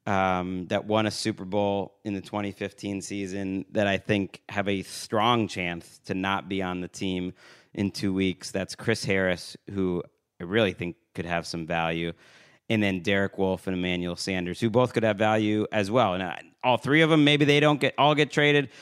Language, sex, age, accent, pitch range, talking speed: English, male, 30-49, American, 95-115 Hz, 200 wpm